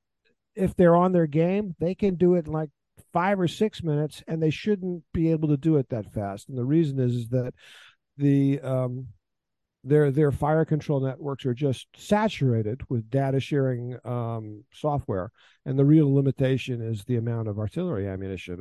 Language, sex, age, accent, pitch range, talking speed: English, male, 50-69, American, 115-150 Hz, 180 wpm